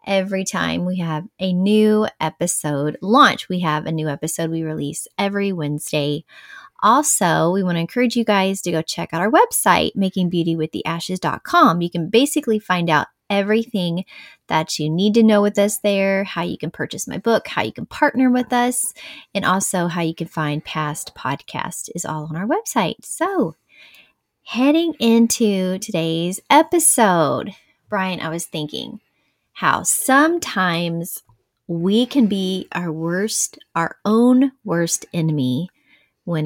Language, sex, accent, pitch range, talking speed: English, female, American, 160-225 Hz, 150 wpm